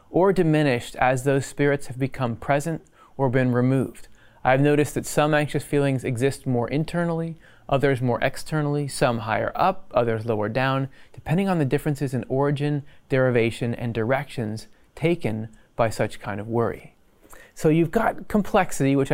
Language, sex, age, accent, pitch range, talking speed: English, male, 30-49, American, 120-150 Hz, 155 wpm